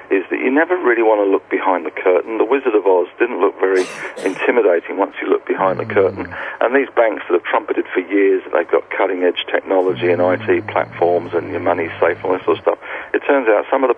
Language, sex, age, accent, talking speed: English, male, 50-69, British, 260 wpm